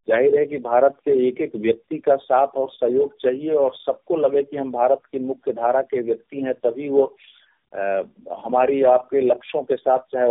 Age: 50-69